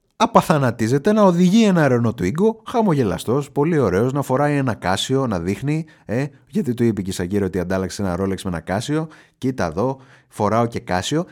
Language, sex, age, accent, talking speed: Greek, male, 30-49, native, 180 wpm